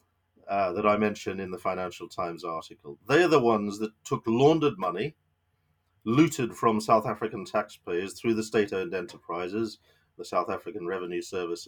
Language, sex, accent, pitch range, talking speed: English, male, British, 100-130 Hz, 160 wpm